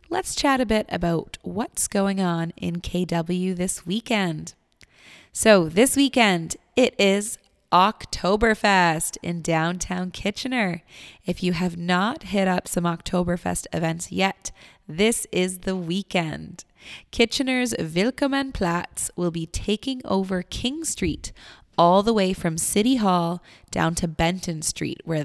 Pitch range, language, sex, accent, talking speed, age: 170-215 Hz, English, female, American, 130 wpm, 20-39